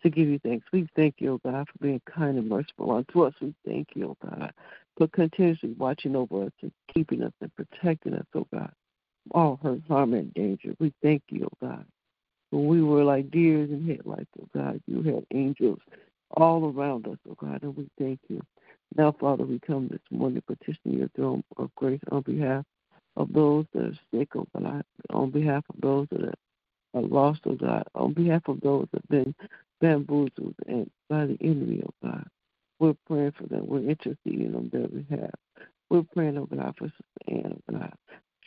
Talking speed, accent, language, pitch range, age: 205 wpm, American, English, 135-155 Hz, 60-79